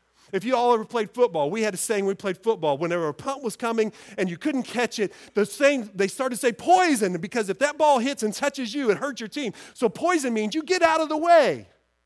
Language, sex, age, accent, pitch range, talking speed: English, male, 40-59, American, 180-280 Hz, 255 wpm